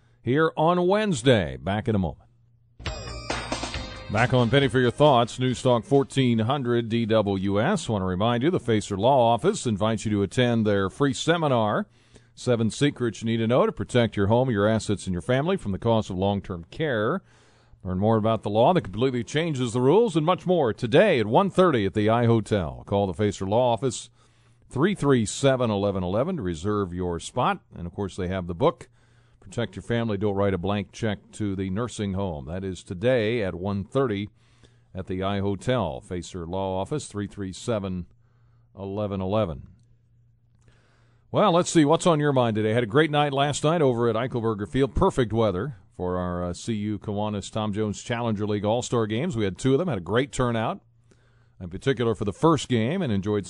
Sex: male